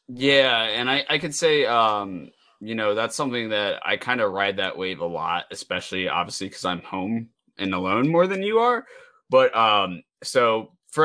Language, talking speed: English, 190 wpm